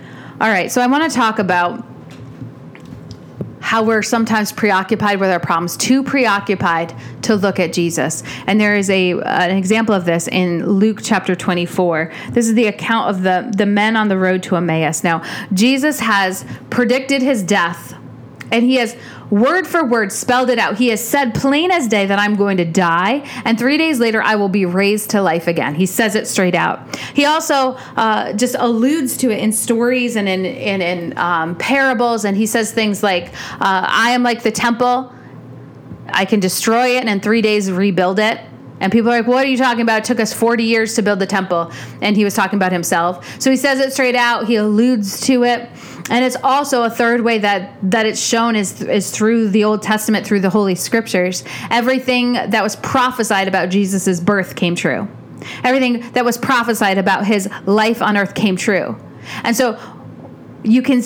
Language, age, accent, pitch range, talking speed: English, 40-59, American, 190-240 Hz, 200 wpm